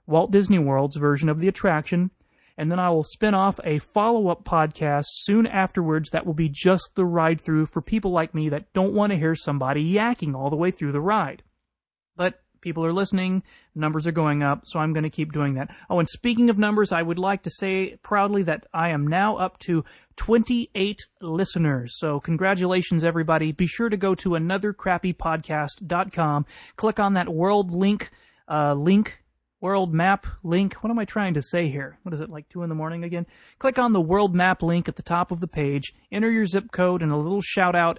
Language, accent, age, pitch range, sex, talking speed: English, American, 30-49, 155-190 Hz, male, 210 wpm